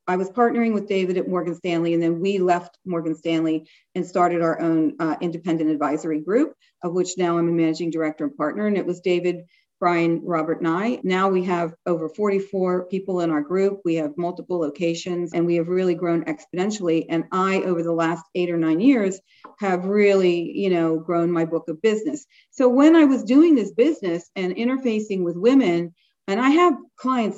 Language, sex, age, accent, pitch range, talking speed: English, female, 40-59, American, 170-225 Hz, 200 wpm